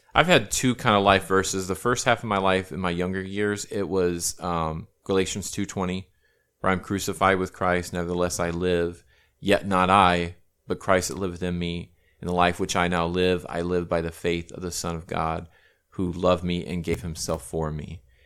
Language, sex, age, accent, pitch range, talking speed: English, male, 30-49, American, 85-95 Hz, 210 wpm